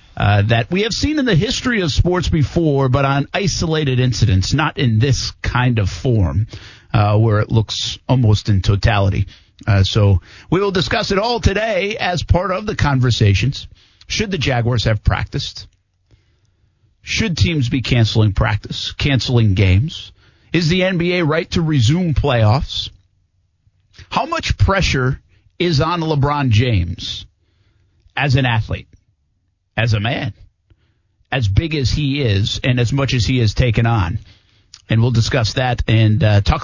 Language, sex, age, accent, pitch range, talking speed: English, male, 50-69, American, 100-130 Hz, 150 wpm